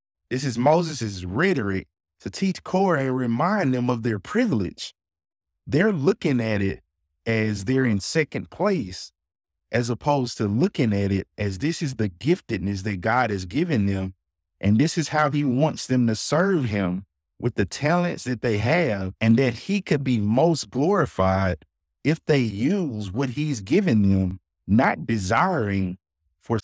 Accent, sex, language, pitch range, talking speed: American, male, English, 95-135 Hz, 160 wpm